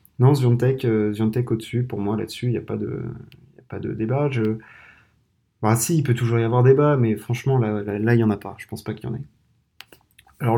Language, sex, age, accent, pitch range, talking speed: French, male, 20-39, French, 115-135 Hz, 240 wpm